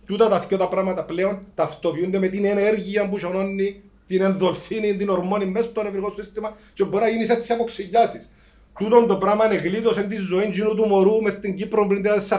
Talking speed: 190 wpm